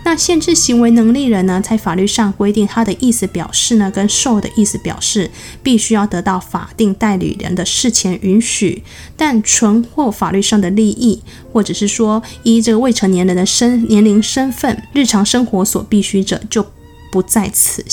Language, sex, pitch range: Chinese, female, 190-230 Hz